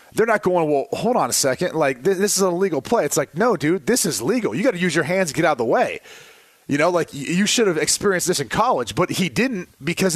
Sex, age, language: male, 30-49, English